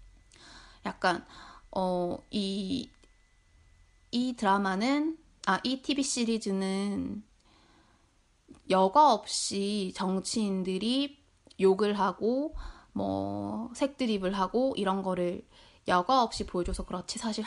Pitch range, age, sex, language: 185-245 Hz, 20-39, female, Korean